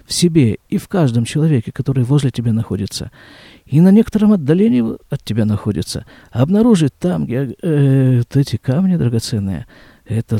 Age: 50-69